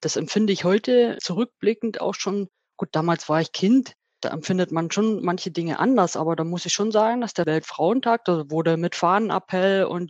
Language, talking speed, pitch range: German, 195 wpm, 170-210 Hz